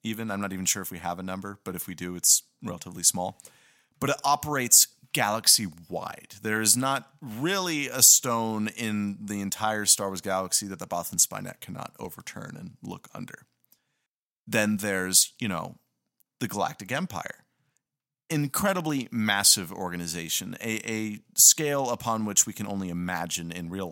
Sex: male